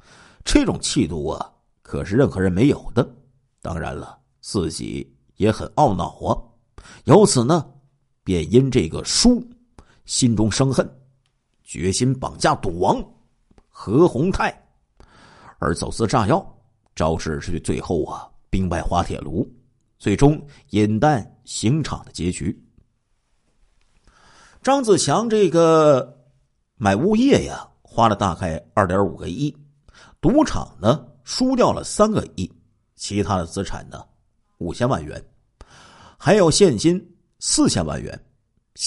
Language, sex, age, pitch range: Chinese, male, 50-69, 95-145 Hz